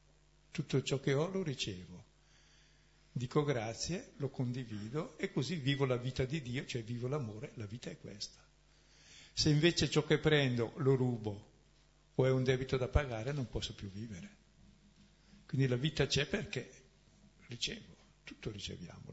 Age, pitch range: 50-69, 115-145 Hz